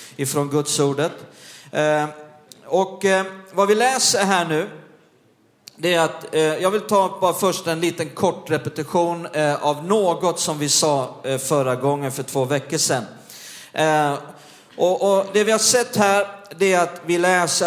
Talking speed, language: 170 wpm, Swedish